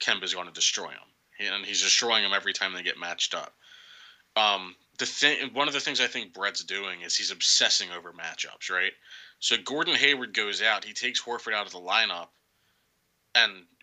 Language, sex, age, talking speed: English, male, 20-39, 200 wpm